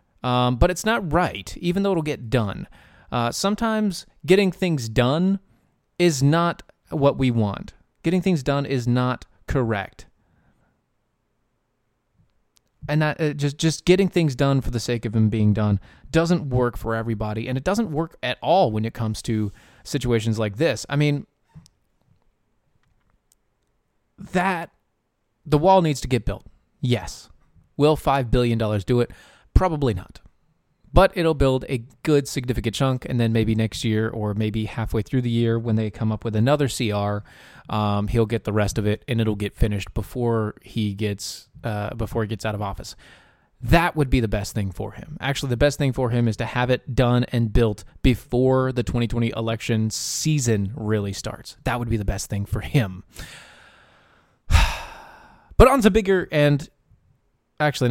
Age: 20-39